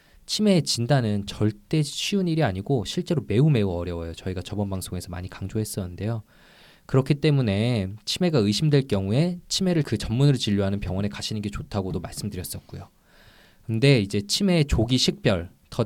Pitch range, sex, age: 100-145 Hz, male, 20-39